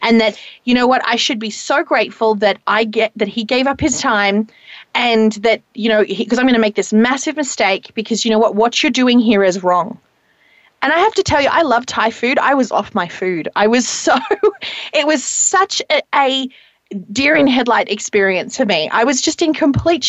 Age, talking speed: 30-49, 225 wpm